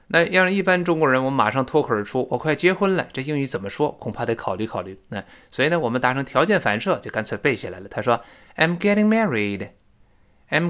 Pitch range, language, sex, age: 115-165 Hz, Chinese, male, 20-39